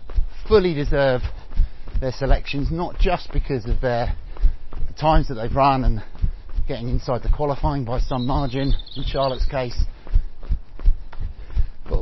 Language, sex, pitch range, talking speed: English, male, 95-145 Hz, 125 wpm